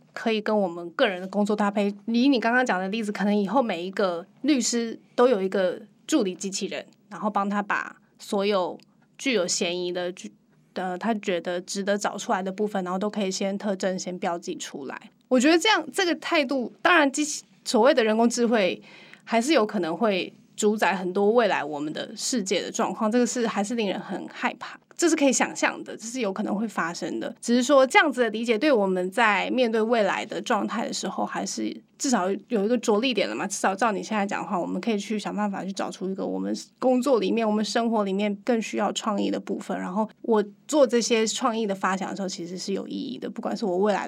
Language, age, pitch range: Chinese, 20-39, 195-235 Hz